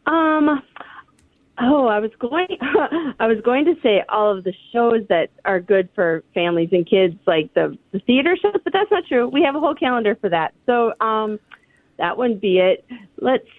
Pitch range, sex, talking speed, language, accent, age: 195-260 Hz, female, 195 wpm, English, American, 30-49